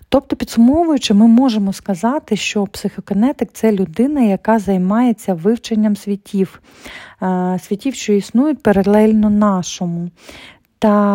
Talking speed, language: 110 wpm, Ukrainian